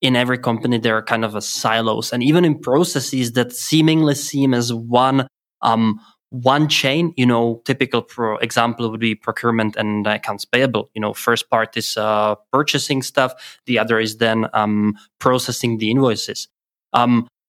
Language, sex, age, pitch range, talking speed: English, male, 20-39, 115-135 Hz, 170 wpm